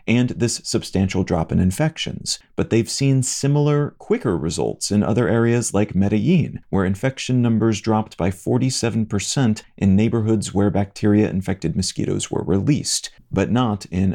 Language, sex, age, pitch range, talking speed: English, male, 40-59, 100-130 Hz, 140 wpm